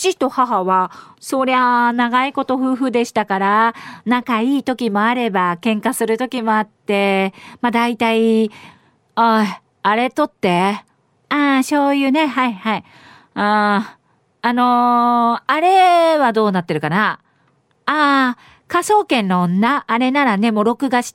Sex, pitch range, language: female, 200-300 Hz, Japanese